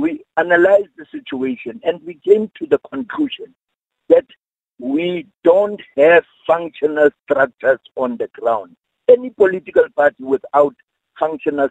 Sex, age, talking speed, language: male, 60-79, 125 wpm, English